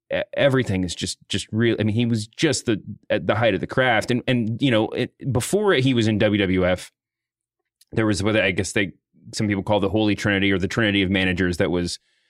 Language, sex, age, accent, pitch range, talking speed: English, male, 30-49, American, 100-120 Hz, 225 wpm